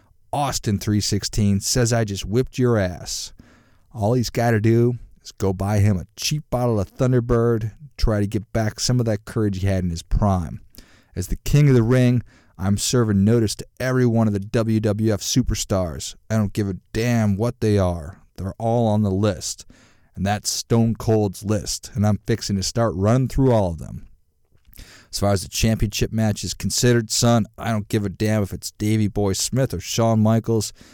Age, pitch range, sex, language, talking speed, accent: 40-59, 95-115 Hz, male, English, 200 wpm, American